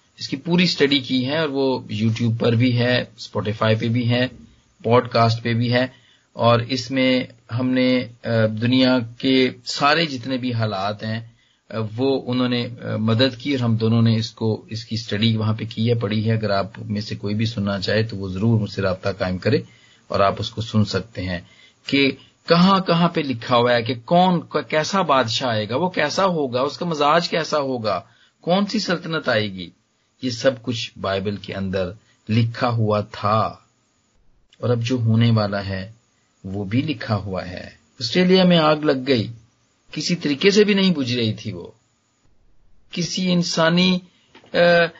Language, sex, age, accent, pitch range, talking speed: Hindi, male, 40-59, native, 110-150 Hz, 170 wpm